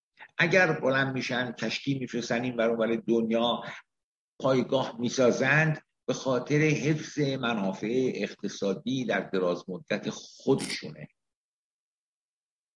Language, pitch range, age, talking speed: Persian, 110-140 Hz, 60-79, 80 wpm